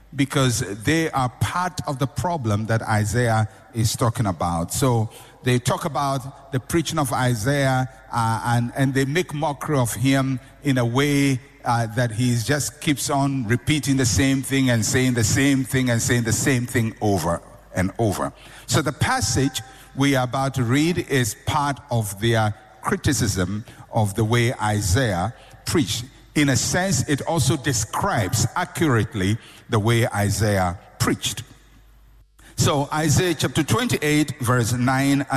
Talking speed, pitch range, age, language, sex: 150 wpm, 115-140 Hz, 50-69, English, male